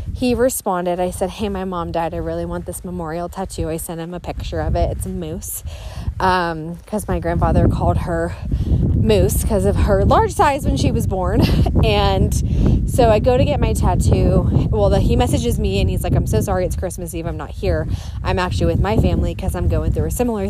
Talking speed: 220 wpm